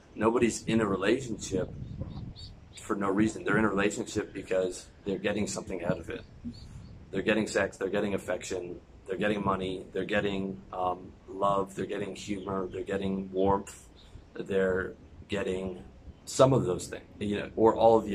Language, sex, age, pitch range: English, male, 30-49, 90-110 Hz